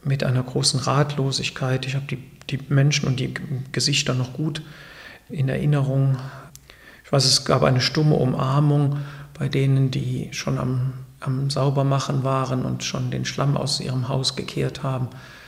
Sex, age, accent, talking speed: male, 50-69, German, 160 wpm